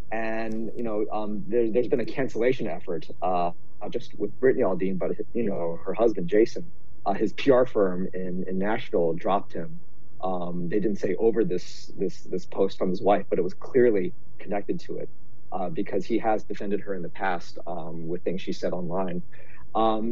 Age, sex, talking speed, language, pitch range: 30-49, male, 195 wpm, English, 95-120 Hz